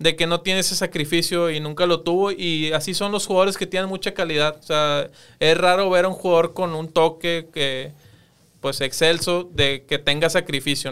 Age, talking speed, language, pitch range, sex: 20-39, 205 wpm, Spanish, 145-170 Hz, male